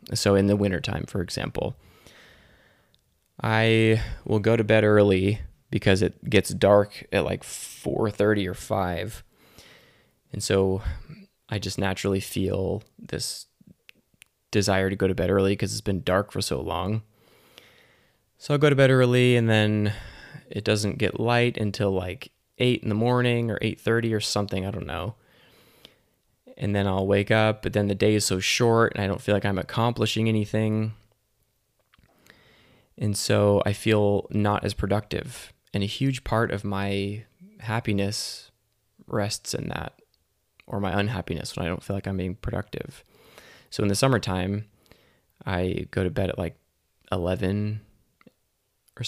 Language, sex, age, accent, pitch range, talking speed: English, male, 20-39, American, 100-110 Hz, 155 wpm